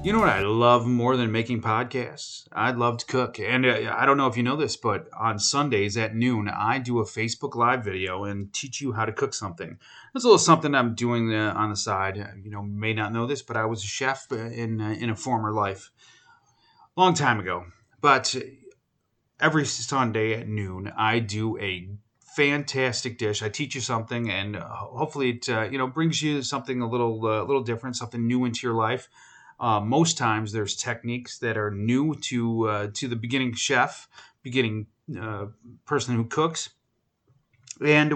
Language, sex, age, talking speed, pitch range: English, male, 30-49, 190 wpm, 110-135 Hz